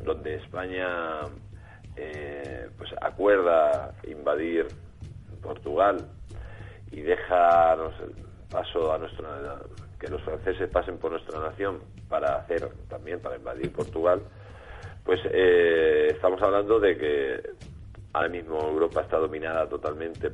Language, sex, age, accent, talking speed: Spanish, male, 40-59, Spanish, 110 wpm